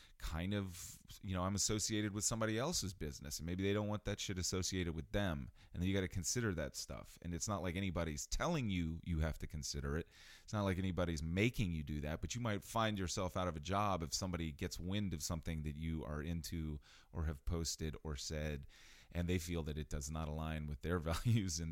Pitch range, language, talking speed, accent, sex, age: 75-95 Hz, English, 230 wpm, American, male, 30-49